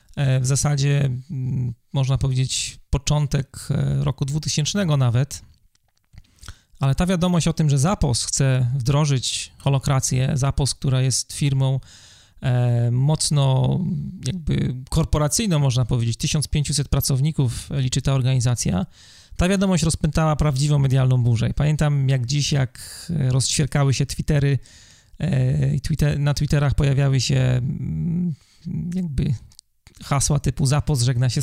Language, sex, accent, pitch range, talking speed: Polish, male, native, 125-150 Hz, 110 wpm